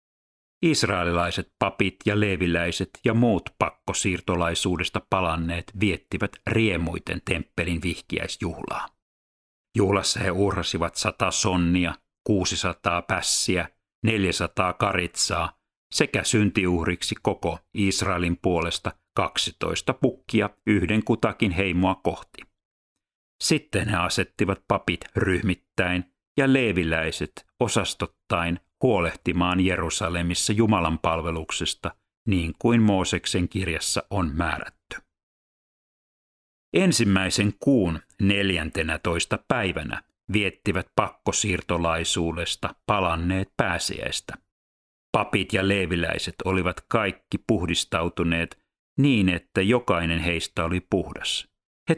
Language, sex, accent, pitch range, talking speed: Finnish, male, native, 85-100 Hz, 80 wpm